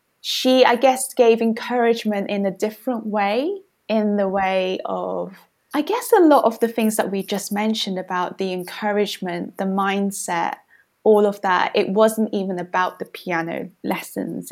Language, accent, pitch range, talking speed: English, British, 190-240 Hz, 160 wpm